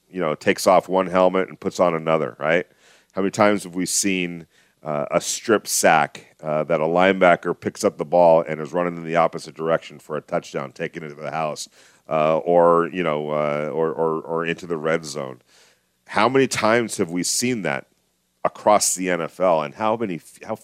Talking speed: 205 wpm